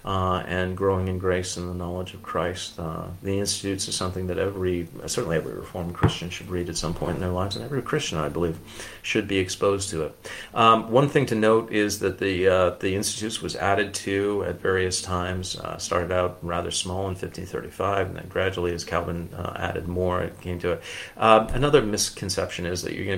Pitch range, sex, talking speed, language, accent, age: 90-100 Hz, male, 210 wpm, English, American, 40-59